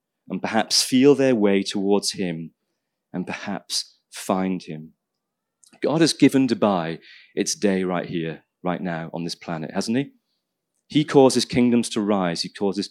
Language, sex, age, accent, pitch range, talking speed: English, male, 30-49, British, 100-135 Hz, 155 wpm